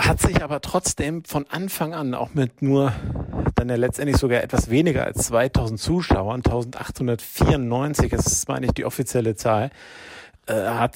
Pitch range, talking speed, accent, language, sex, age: 115-140 Hz, 155 wpm, German, German, male, 50-69